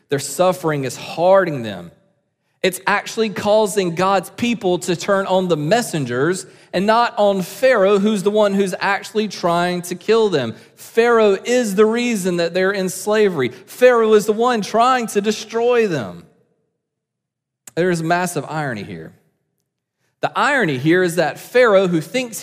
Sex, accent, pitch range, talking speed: male, American, 145-215 Hz, 155 wpm